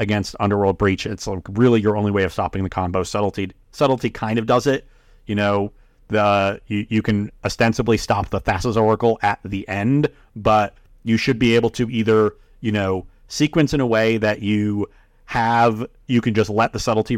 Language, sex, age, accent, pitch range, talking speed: English, male, 30-49, American, 95-115 Hz, 190 wpm